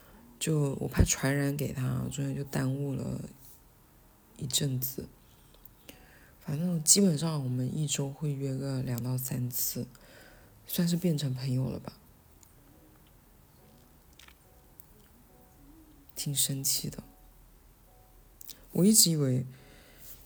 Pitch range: 130-165 Hz